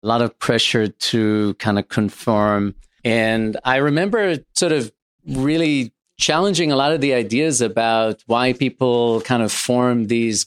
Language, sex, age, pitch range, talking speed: English, male, 40-59, 110-135 Hz, 155 wpm